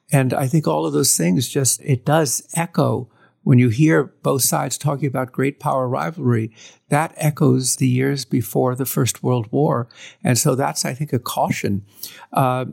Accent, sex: American, male